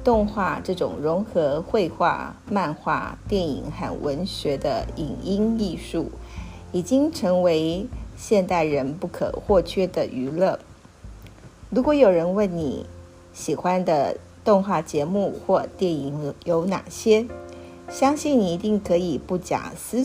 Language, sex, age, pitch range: Chinese, female, 50-69, 125-205 Hz